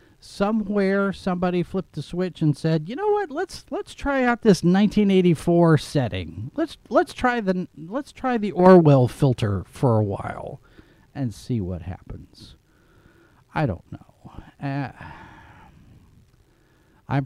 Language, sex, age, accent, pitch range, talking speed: English, male, 40-59, American, 100-150 Hz, 130 wpm